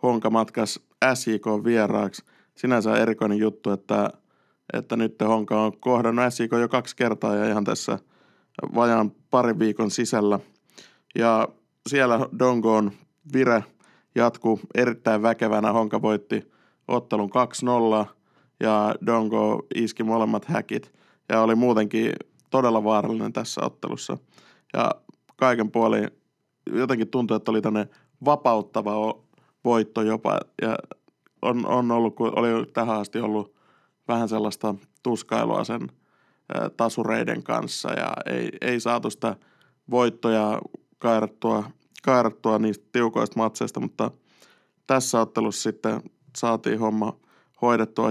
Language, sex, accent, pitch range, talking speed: Finnish, male, native, 110-120 Hz, 110 wpm